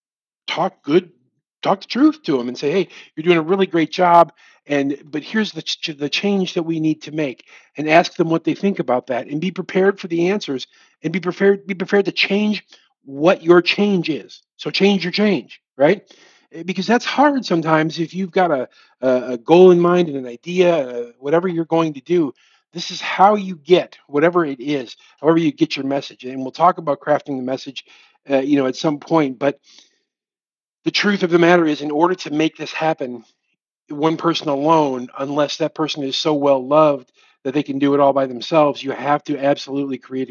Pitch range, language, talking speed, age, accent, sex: 140-175 Hz, English, 205 wpm, 50-69, American, male